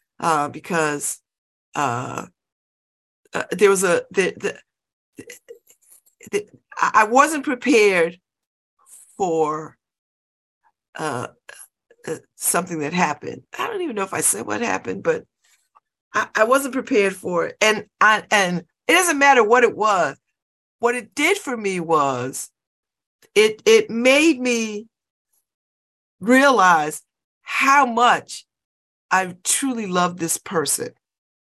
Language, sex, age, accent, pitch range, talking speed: English, female, 50-69, American, 175-275 Hz, 120 wpm